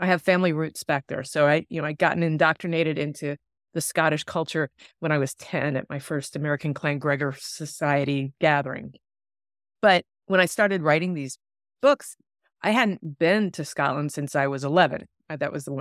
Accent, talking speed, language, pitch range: American, 180 wpm, English, 140-180 Hz